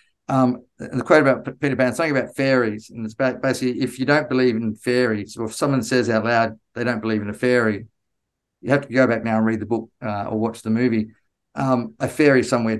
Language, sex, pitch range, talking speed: English, male, 110-130 Hz, 235 wpm